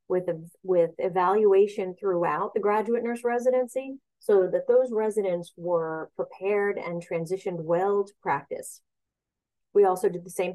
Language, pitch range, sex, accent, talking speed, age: English, 175-225 Hz, female, American, 135 wpm, 40-59